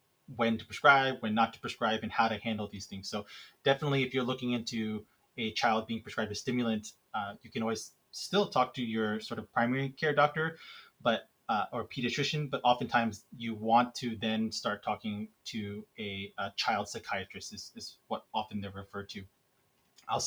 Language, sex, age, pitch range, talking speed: English, male, 20-39, 110-135 Hz, 185 wpm